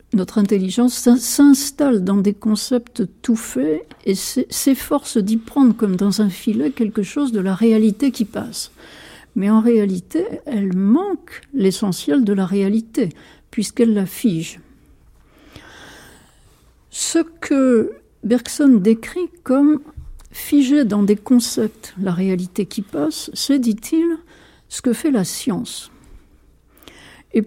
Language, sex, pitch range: French, female, 200-270 Hz